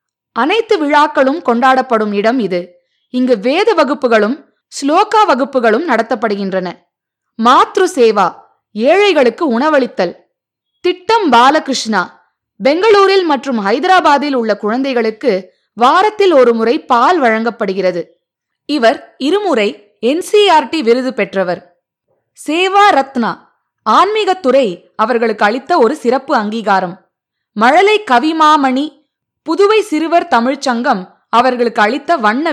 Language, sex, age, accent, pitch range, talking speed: Tamil, female, 20-39, native, 220-315 Hz, 90 wpm